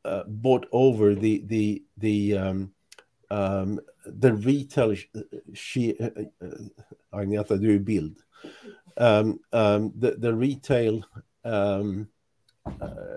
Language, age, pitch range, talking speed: English, 50-69, 110-155 Hz, 95 wpm